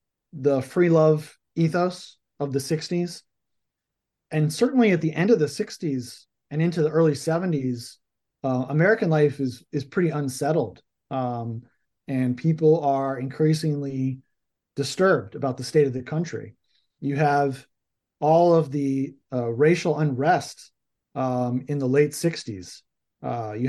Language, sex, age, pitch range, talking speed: English, male, 30-49, 130-160 Hz, 135 wpm